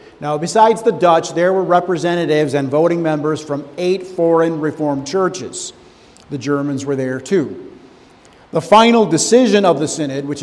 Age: 50-69